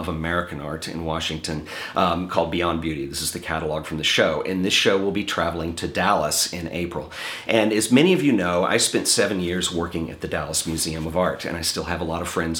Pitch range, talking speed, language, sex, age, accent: 80-95 Hz, 240 wpm, English, male, 40-59, American